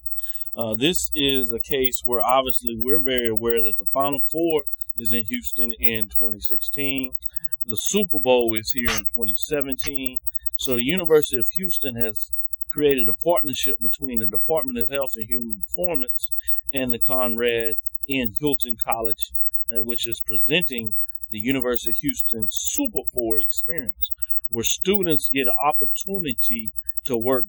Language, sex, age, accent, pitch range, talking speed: English, male, 40-59, American, 105-140 Hz, 145 wpm